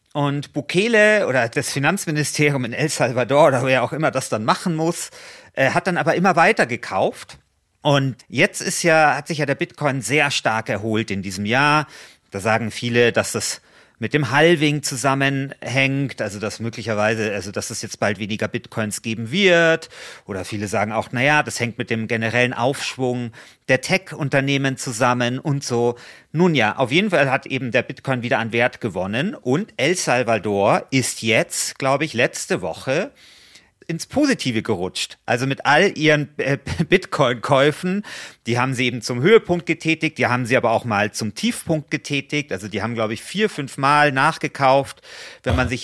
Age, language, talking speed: 40-59, German, 175 wpm